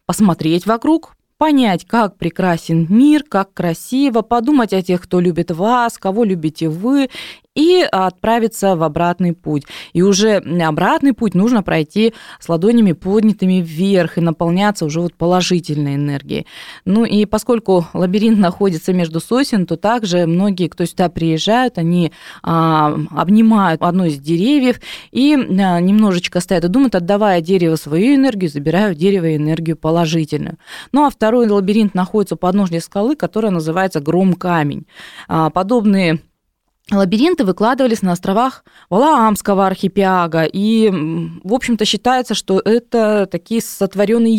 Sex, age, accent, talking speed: female, 20-39, native, 130 wpm